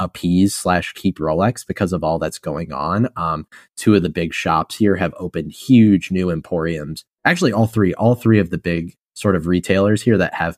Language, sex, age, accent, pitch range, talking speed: English, male, 30-49, American, 85-105 Hz, 205 wpm